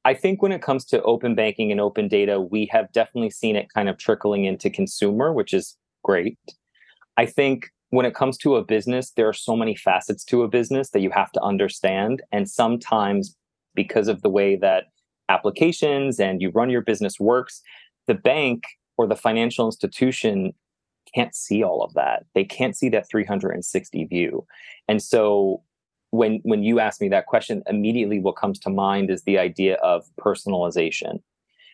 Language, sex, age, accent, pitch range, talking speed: English, male, 30-49, American, 100-125 Hz, 180 wpm